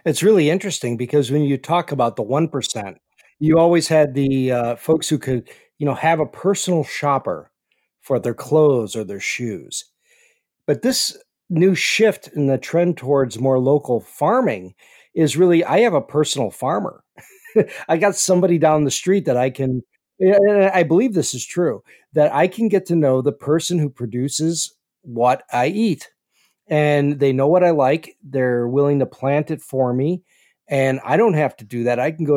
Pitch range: 130-180 Hz